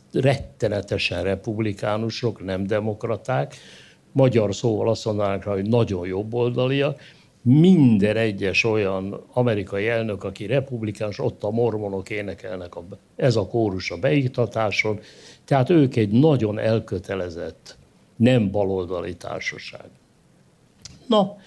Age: 60-79